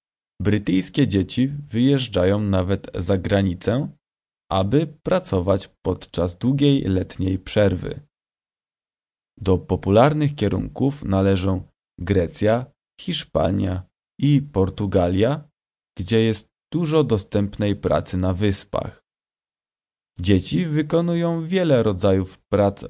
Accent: Polish